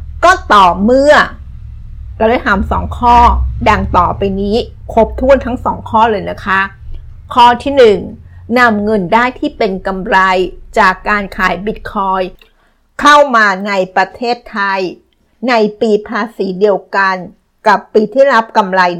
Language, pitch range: Thai, 190-230 Hz